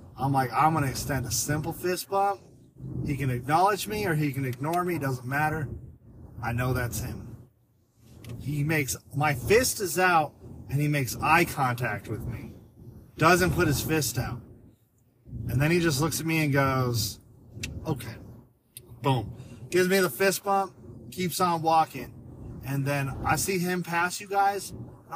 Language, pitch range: English, 120-175 Hz